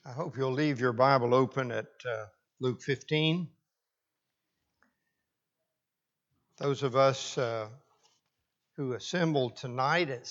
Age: 60-79